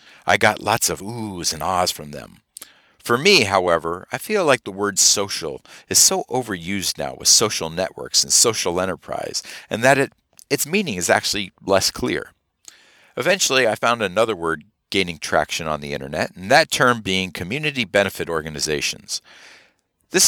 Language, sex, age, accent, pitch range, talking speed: English, male, 50-69, American, 90-140 Hz, 165 wpm